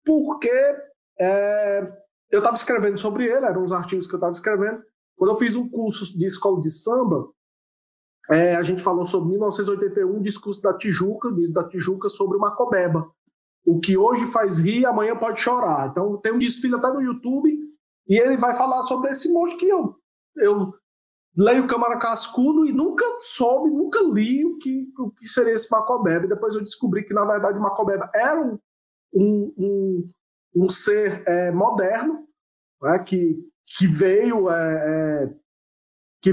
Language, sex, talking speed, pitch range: Portuguese, male, 170 wpm, 185-240 Hz